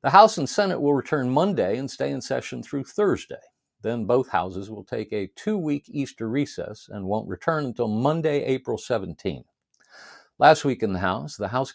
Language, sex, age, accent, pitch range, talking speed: English, male, 50-69, American, 105-135 Hz, 185 wpm